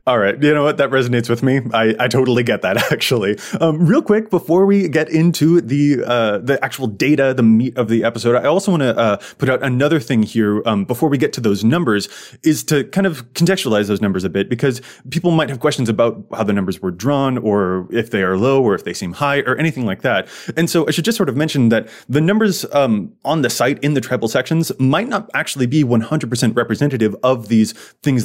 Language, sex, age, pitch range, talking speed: English, male, 30-49, 110-150 Hz, 240 wpm